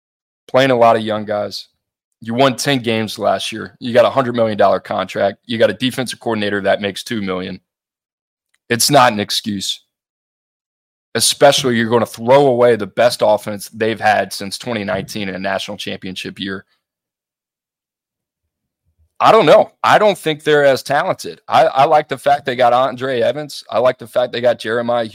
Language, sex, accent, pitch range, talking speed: English, male, American, 105-145 Hz, 175 wpm